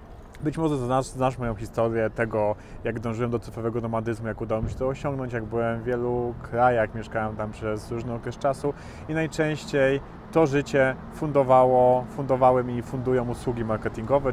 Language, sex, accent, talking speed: Polish, male, native, 175 wpm